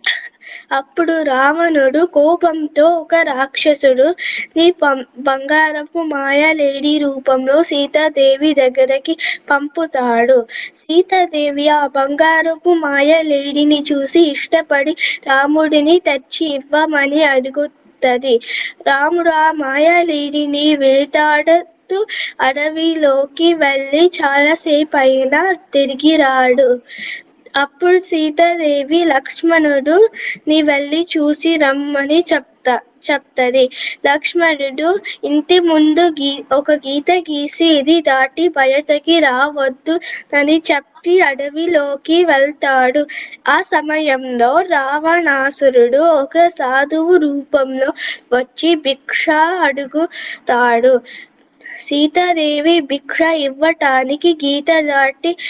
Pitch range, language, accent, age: 275-330 Hz, Telugu, native, 20-39